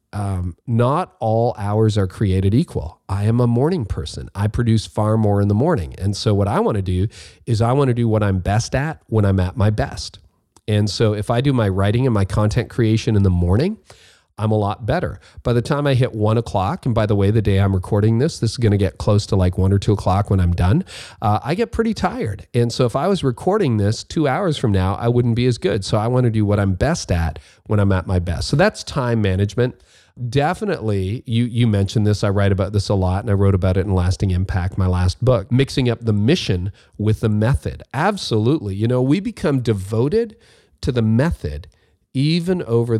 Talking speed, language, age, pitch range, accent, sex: 235 wpm, English, 40-59, 100-125 Hz, American, male